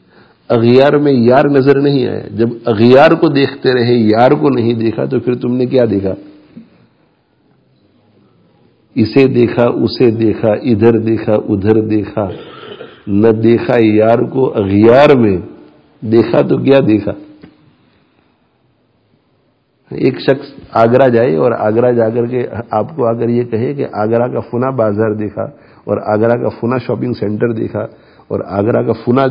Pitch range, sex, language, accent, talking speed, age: 115-145 Hz, male, English, Indian, 135 wpm, 50-69